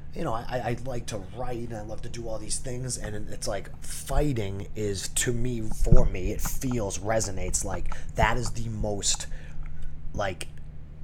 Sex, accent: male, American